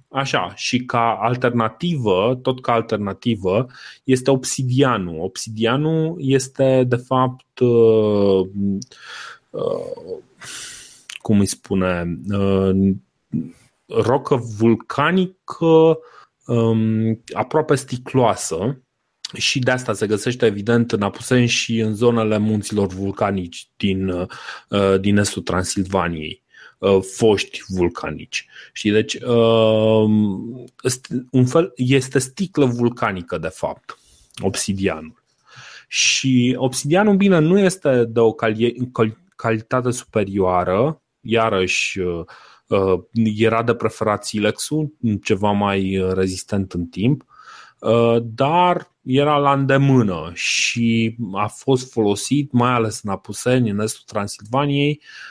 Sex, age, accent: male, 30-49, native